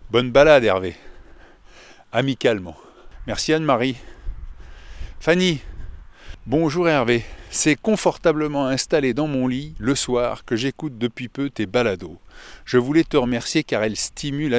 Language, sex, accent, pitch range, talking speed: French, male, French, 105-135 Hz, 125 wpm